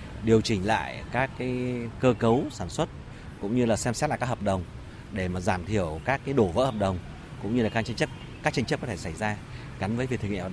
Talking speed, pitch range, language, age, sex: 270 wpm, 95-120 Hz, Vietnamese, 30-49, male